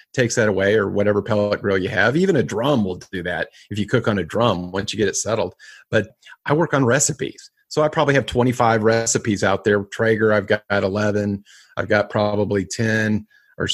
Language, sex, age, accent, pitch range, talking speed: English, male, 30-49, American, 105-125 Hz, 210 wpm